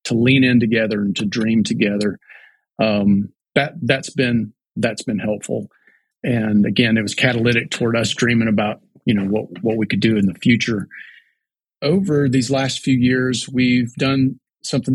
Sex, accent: male, American